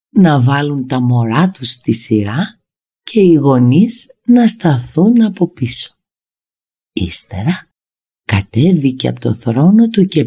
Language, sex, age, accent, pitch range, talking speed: Greek, female, 50-69, native, 130-190 Hz, 125 wpm